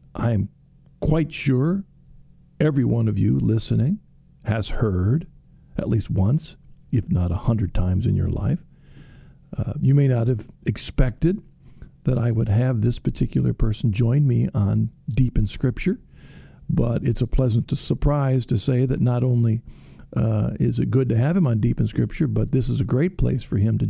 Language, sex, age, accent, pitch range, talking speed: English, male, 50-69, American, 115-155 Hz, 175 wpm